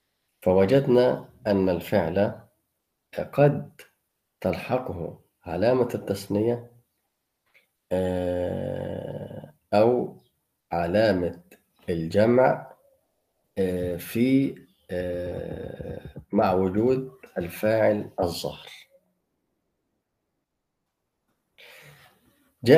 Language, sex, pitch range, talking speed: Arabic, male, 90-125 Hz, 40 wpm